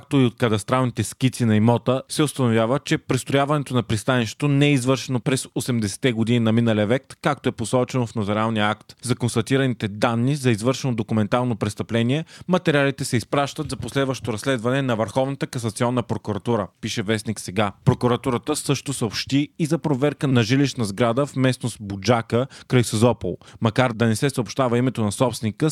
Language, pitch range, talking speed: Bulgarian, 115-135 Hz, 160 wpm